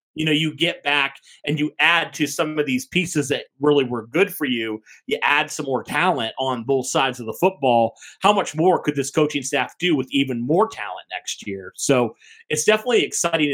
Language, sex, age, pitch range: English, male, 30-49, 130-165 Hz